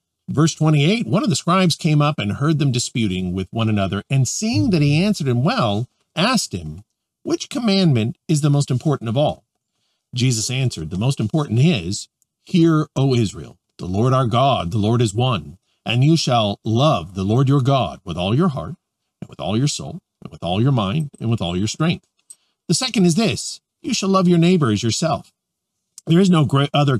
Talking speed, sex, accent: 200 wpm, male, American